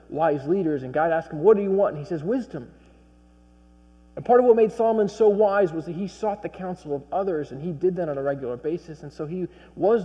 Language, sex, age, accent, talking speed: English, male, 40-59, American, 250 wpm